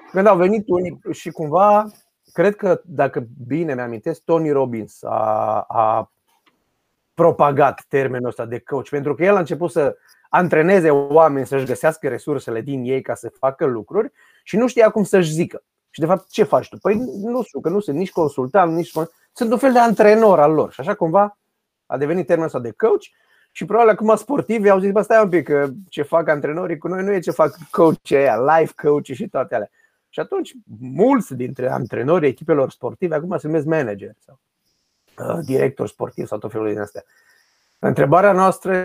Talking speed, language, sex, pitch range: 190 wpm, Romanian, male, 135-190 Hz